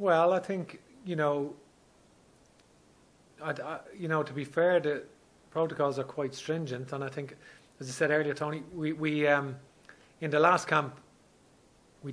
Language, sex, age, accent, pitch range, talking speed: English, male, 30-49, Irish, 135-160 Hz, 160 wpm